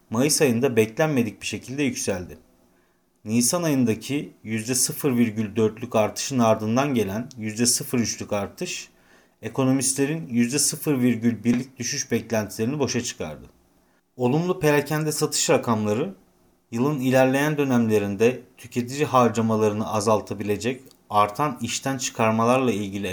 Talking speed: 90 wpm